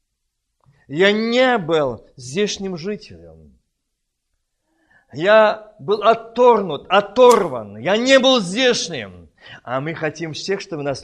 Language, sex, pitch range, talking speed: Russian, male, 165-255 Hz, 105 wpm